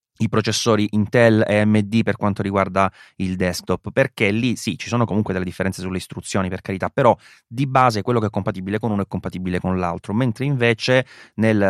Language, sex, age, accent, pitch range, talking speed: Italian, male, 30-49, native, 95-115 Hz, 195 wpm